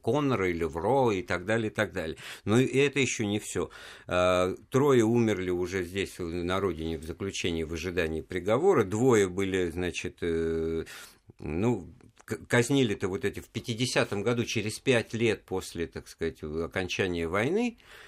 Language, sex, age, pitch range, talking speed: Russian, male, 50-69, 85-110 Hz, 145 wpm